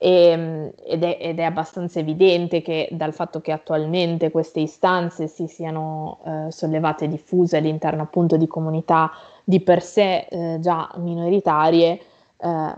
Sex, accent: female, native